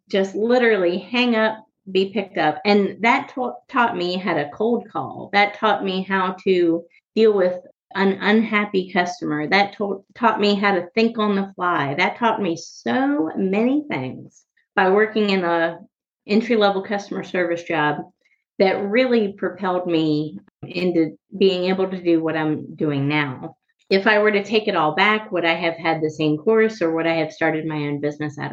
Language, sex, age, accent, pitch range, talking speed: English, female, 30-49, American, 180-220 Hz, 180 wpm